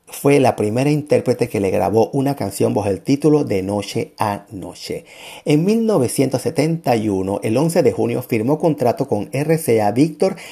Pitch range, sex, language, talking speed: 105-140 Hz, male, Spanish, 155 wpm